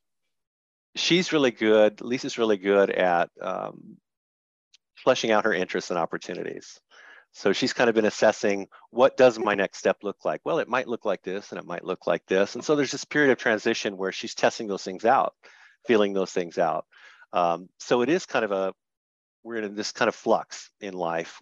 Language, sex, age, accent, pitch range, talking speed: English, male, 50-69, American, 95-125 Hz, 200 wpm